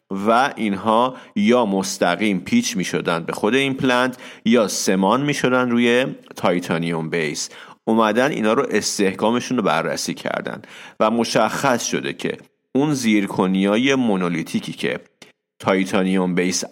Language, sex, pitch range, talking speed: English, male, 85-110 Hz, 120 wpm